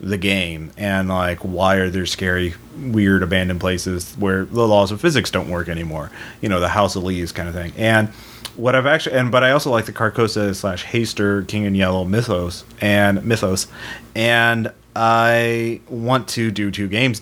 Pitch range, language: 95-115 Hz, English